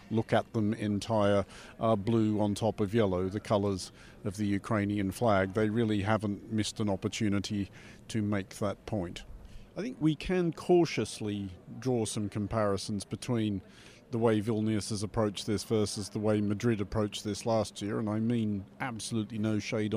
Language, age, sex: English, 50-69, male